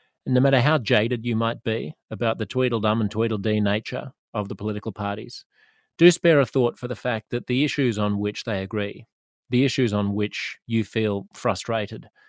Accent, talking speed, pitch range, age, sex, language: Australian, 185 wpm, 105-115 Hz, 30-49, male, English